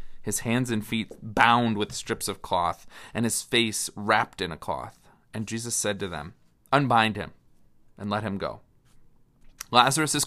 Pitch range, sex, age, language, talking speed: 115-145 Hz, male, 30-49, English, 170 wpm